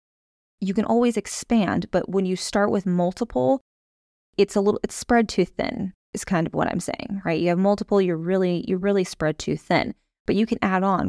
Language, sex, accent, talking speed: English, female, American, 210 wpm